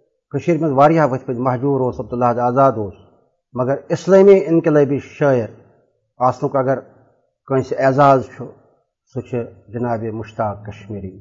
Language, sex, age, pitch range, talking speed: Urdu, male, 50-69, 120-160 Hz, 120 wpm